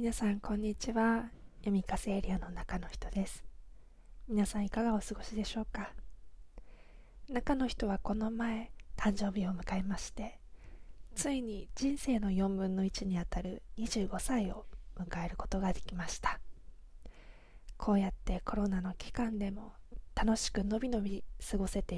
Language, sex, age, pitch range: Japanese, female, 20-39, 190-225 Hz